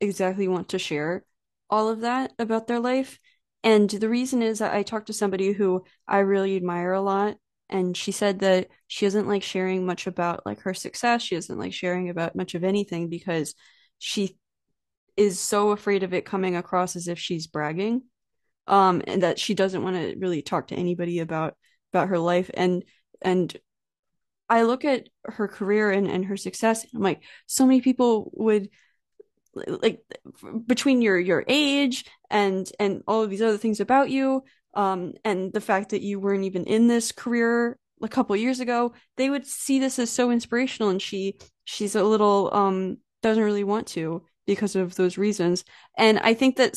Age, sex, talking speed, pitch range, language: 20-39, female, 185 wpm, 185-225 Hz, English